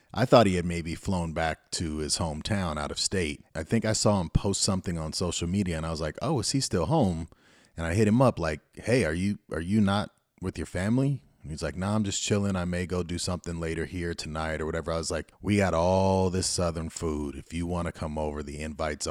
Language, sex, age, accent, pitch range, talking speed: English, male, 30-49, American, 80-100 Hz, 255 wpm